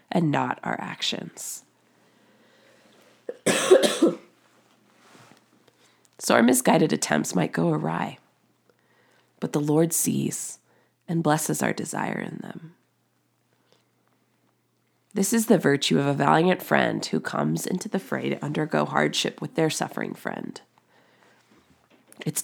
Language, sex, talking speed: English, female, 110 wpm